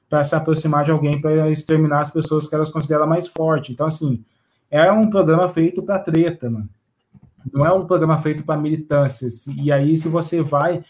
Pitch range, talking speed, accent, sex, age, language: 140-160 Hz, 200 wpm, Brazilian, male, 20-39, Portuguese